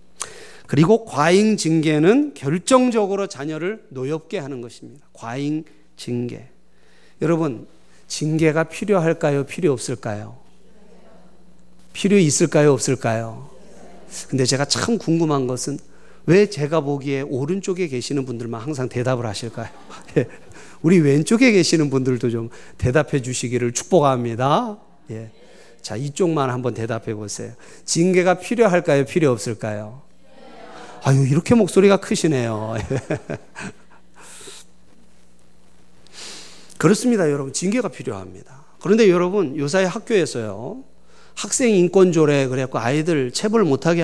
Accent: native